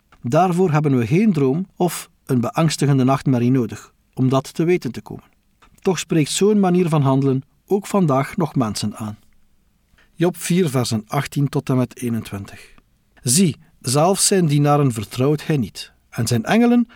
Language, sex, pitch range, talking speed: Dutch, male, 125-175 Hz, 160 wpm